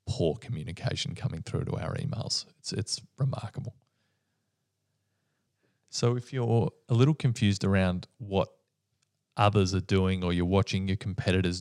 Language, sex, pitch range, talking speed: English, male, 90-115 Hz, 135 wpm